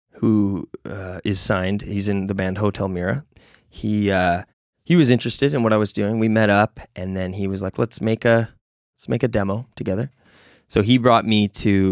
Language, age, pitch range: English, 20-39, 90-110 Hz